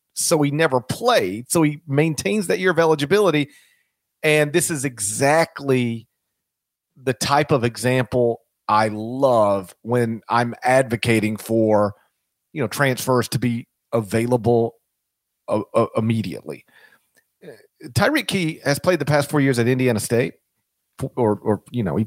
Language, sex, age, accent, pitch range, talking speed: English, male, 40-59, American, 115-155 Hz, 135 wpm